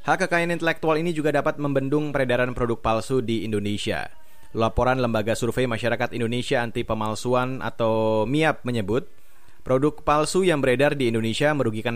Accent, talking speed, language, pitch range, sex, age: native, 135 wpm, Indonesian, 120-145 Hz, male, 30-49